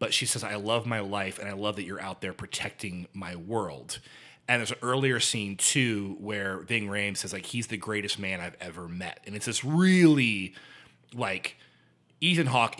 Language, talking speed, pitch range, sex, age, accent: English, 195 wpm, 100-140 Hz, male, 30-49, American